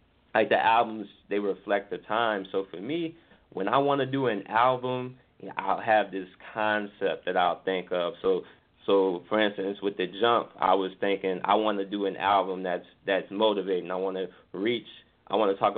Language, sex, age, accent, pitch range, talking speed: English, male, 20-39, American, 95-110 Hz, 200 wpm